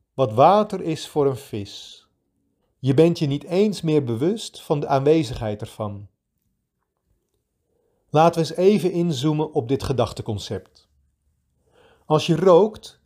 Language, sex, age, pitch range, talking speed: Dutch, male, 40-59, 115-170 Hz, 130 wpm